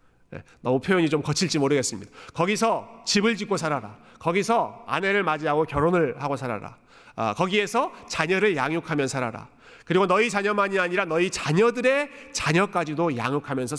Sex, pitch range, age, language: male, 150-235 Hz, 40-59, Korean